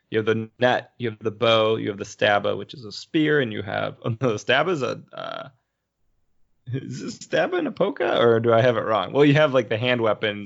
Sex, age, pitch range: male, 20-39, 100-120 Hz